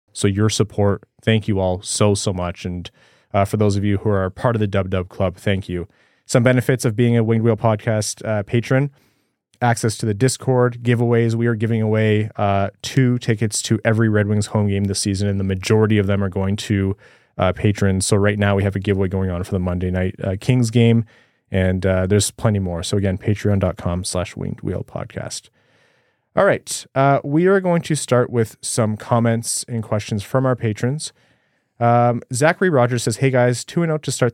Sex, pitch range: male, 100-125 Hz